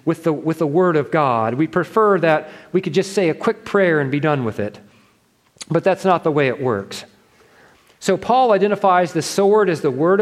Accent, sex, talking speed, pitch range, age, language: American, male, 210 wpm, 150-195 Hz, 40-59, English